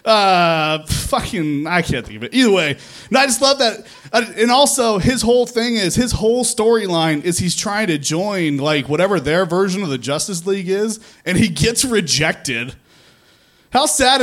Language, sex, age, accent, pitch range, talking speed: English, male, 20-39, American, 175-230 Hz, 185 wpm